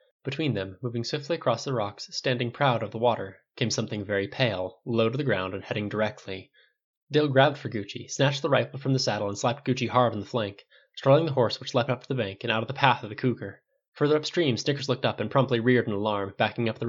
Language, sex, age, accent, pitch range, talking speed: English, male, 20-39, American, 110-135 Hz, 250 wpm